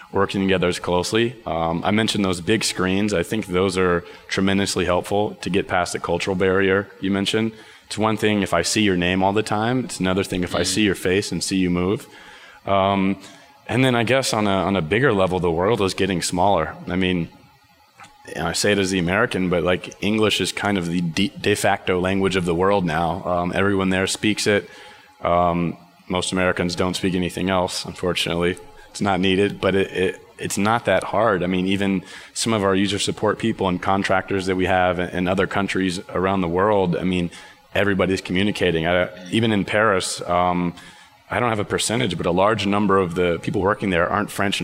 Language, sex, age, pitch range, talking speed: German, male, 20-39, 90-100 Hz, 205 wpm